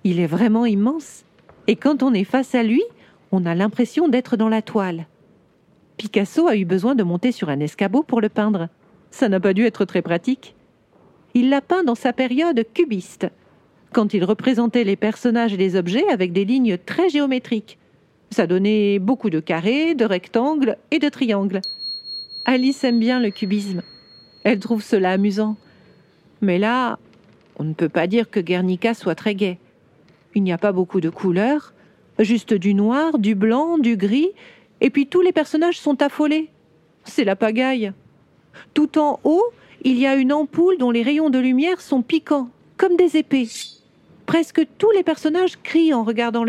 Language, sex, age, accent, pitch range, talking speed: French, female, 40-59, French, 200-280 Hz, 175 wpm